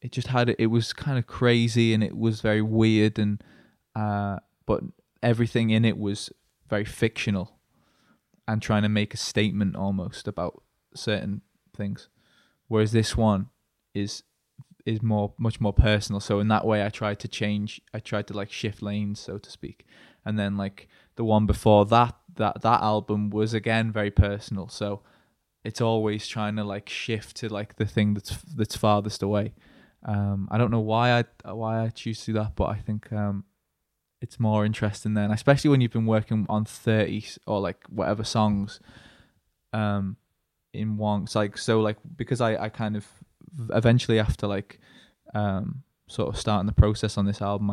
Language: English